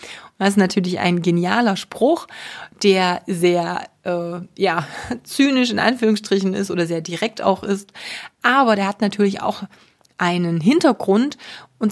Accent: German